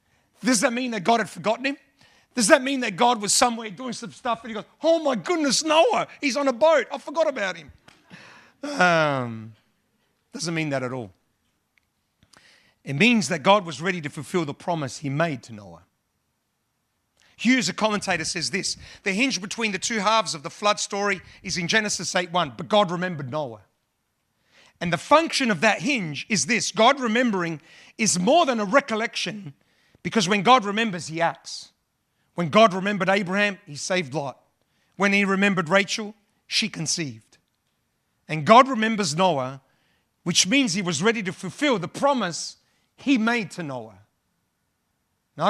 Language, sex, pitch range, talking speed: English, male, 180-235 Hz, 170 wpm